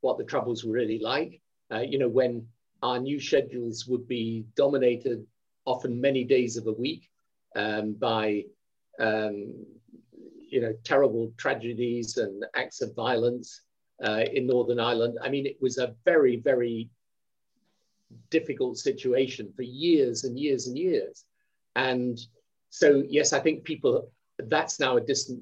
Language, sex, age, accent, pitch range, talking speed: English, male, 50-69, British, 120-170 Hz, 145 wpm